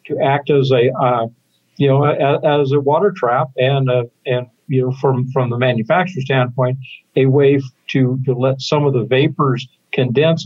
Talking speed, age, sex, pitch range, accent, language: 195 wpm, 60-79, male, 130-160 Hz, American, English